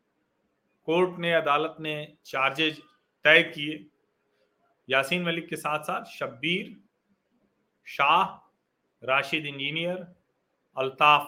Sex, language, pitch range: male, Hindi, 145-195 Hz